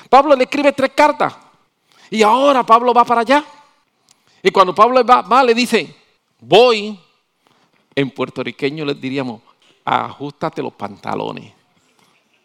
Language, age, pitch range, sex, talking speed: English, 50-69, 160-265 Hz, male, 125 wpm